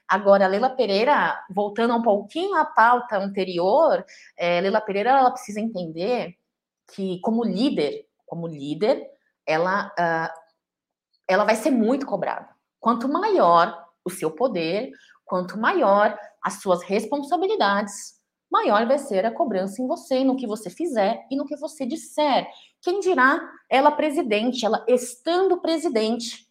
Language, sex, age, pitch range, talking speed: Portuguese, female, 20-39, 205-285 Hz, 140 wpm